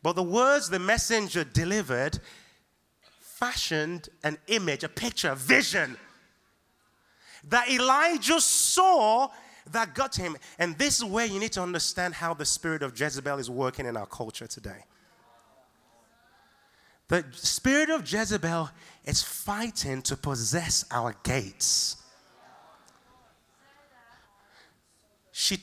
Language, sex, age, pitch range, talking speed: English, male, 30-49, 160-270 Hz, 115 wpm